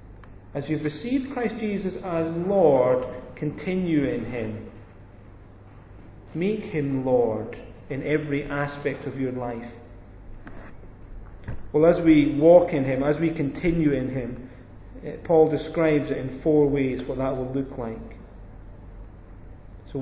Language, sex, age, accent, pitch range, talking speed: English, male, 40-59, British, 115-165 Hz, 125 wpm